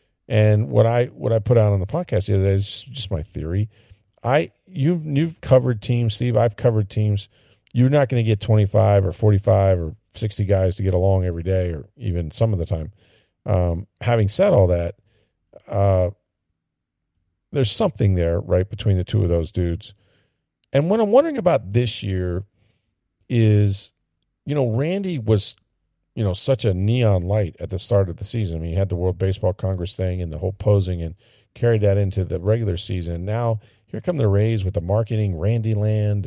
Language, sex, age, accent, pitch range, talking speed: English, male, 40-59, American, 95-120 Hz, 200 wpm